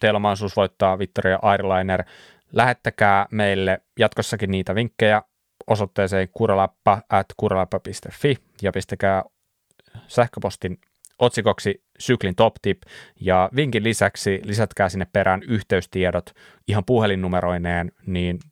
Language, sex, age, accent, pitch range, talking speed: Finnish, male, 20-39, native, 95-120 Hz, 100 wpm